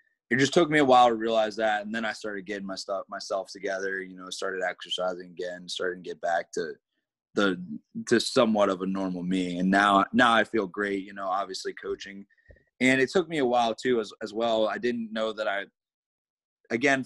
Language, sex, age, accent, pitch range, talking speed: English, male, 20-39, American, 100-120 Hz, 220 wpm